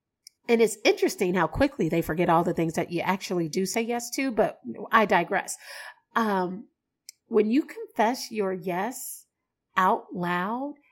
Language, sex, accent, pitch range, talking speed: English, female, American, 190-265 Hz, 155 wpm